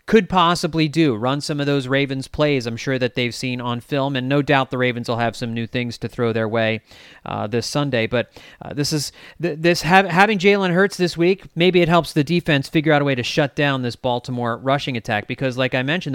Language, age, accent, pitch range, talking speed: English, 30-49, American, 125-165 Hz, 235 wpm